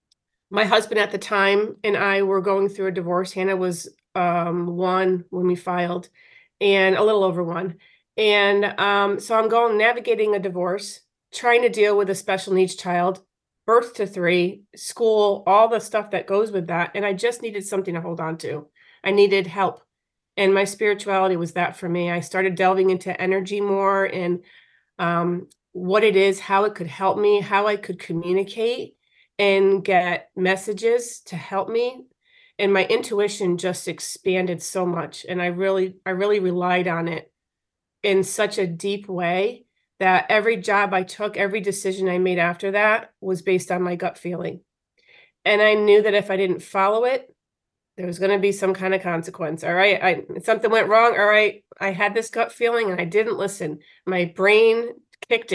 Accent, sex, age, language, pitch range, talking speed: American, female, 30-49, English, 180-210 Hz, 185 wpm